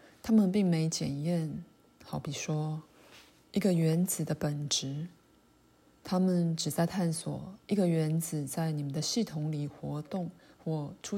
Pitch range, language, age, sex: 150-175 Hz, Chinese, 20-39, female